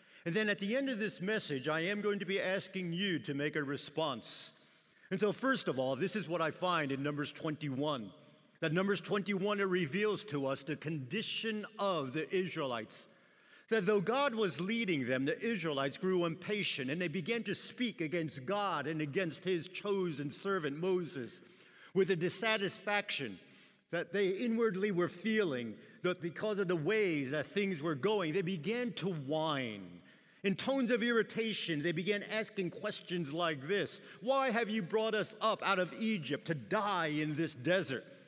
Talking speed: 175 wpm